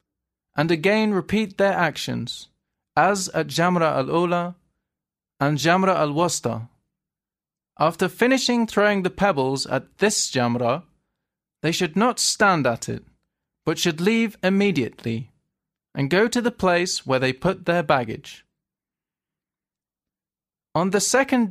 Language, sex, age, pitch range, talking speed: English, male, 20-39, 145-200 Hz, 125 wpm